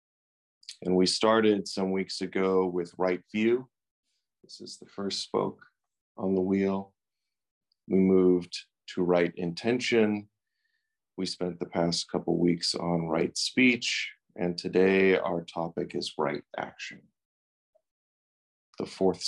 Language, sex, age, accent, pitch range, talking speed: English, male, 40-59, American, 90-110 Hz, 130 wpm